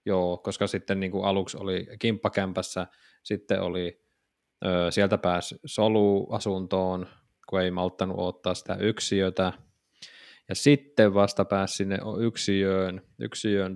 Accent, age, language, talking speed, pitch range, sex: native, 20-39, Finnish, 120 wpm, 95-120 Hz, male